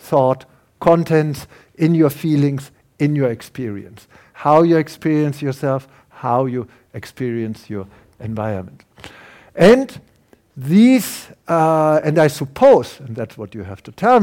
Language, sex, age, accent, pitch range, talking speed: English, male, 60-79, German, 125-175 Hz, 125 wpm